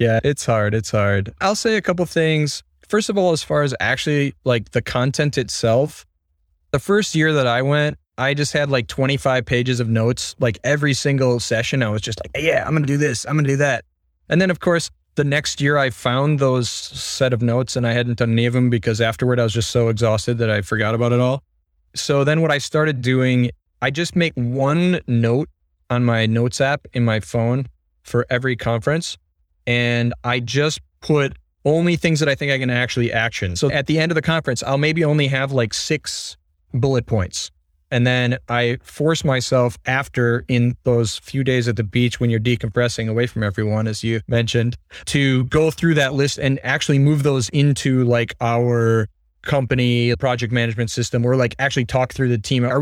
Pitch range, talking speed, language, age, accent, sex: 115-140 Hz, 205 wpm, English, 20-39, American, male